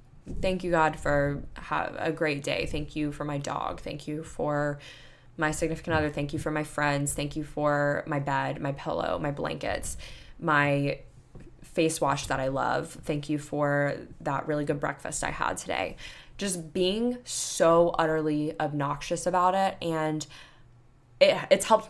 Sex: female